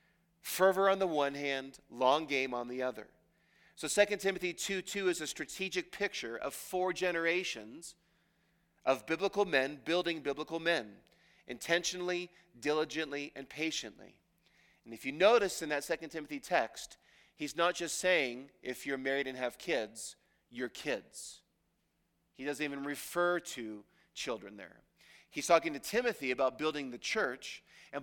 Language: English